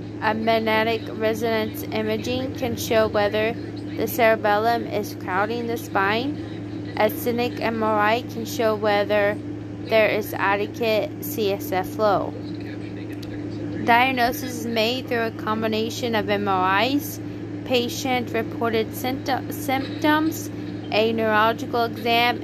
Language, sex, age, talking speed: English, female, 20-39, 100 wpm